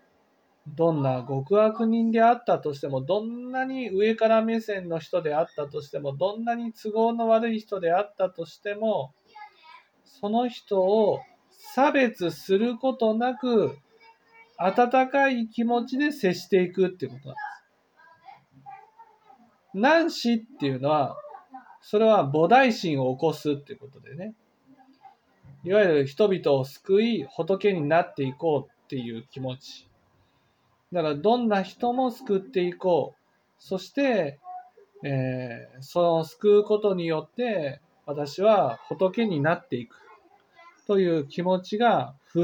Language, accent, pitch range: Japanese, native, 165-245 Hz